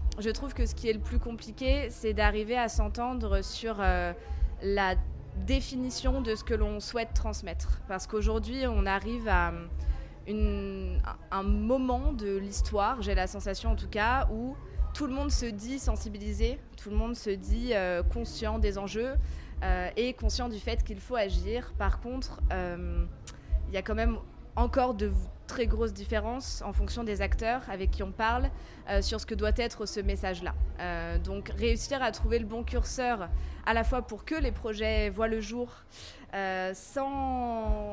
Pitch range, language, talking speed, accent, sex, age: 180-240 Hz, French, 175 wpm, French, female, 20-39